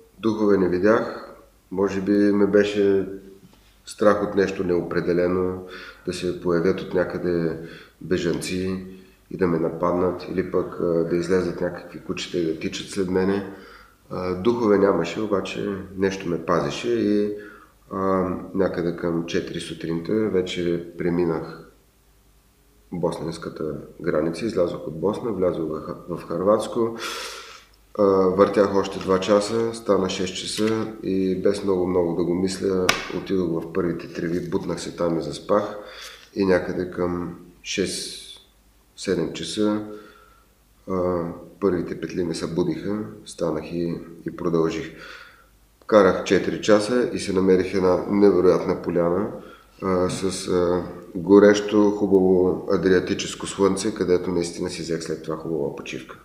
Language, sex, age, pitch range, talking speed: Bulgarian, male, 30-49, 85-100 Hz, 120 wpm